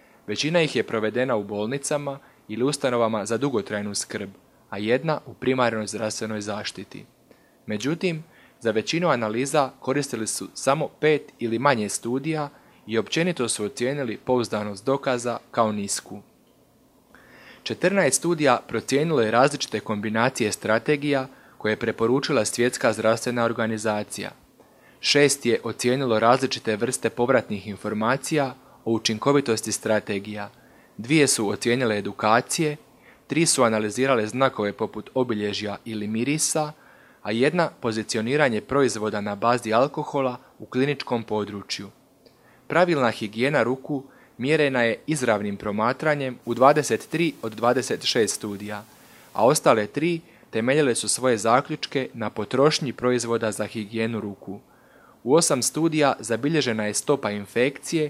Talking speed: 115 wpm